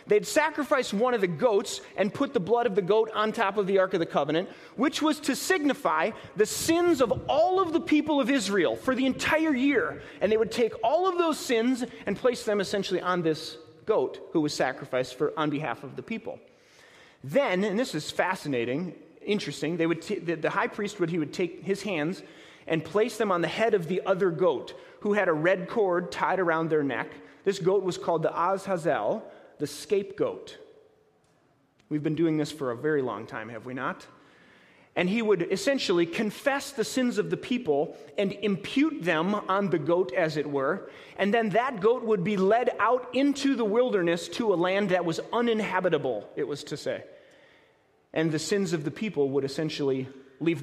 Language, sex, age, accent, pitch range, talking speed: English, male, 30-49, American, 160-250 Hz, 200 wpm